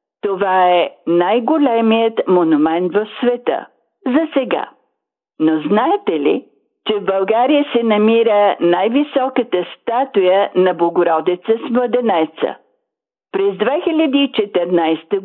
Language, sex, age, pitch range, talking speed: Bulgarian, female, 50-69, 175-255 Hz, 100 wpm